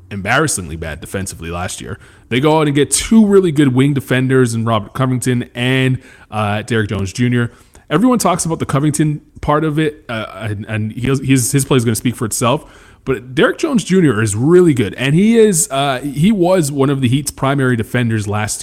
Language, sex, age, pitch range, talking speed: English, male, 20-39, 115-145 Hz, 210 wpm